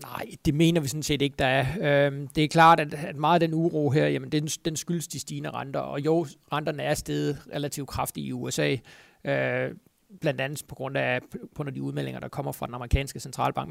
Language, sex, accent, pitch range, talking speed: Danish, male, native, 140-165 Hz, 240 wpm